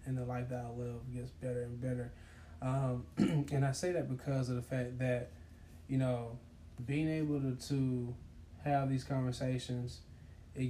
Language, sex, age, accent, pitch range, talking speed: English, male, 10-29, American, 120-130 Hz, 170 wpm